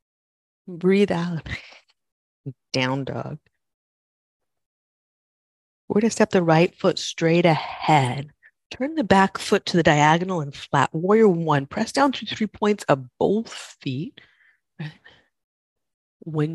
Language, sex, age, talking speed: English, female, 30-49, 120 wpm